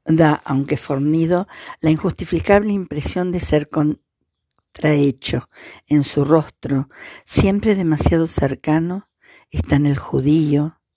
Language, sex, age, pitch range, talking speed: Spanish, female, 50-69, 140-165 Hz, 100 wpm